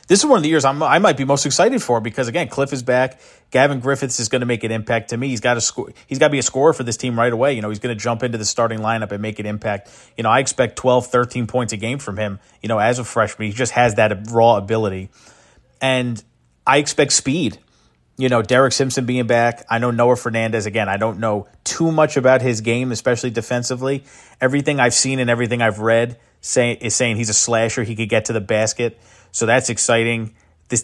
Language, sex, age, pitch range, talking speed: English, male, 30-49, 110-130 Hz, 245 wpm